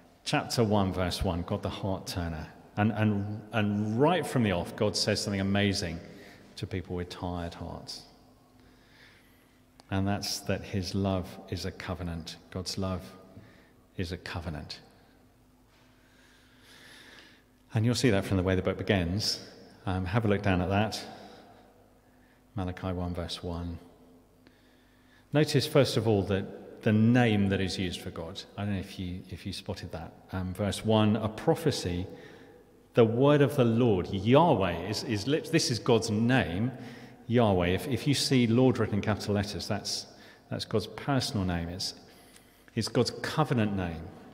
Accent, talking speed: British, 155 wpm